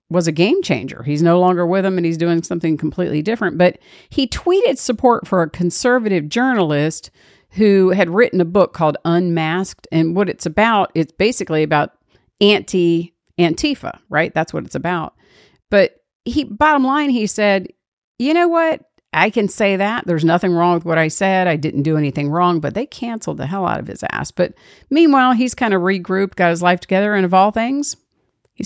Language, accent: English, American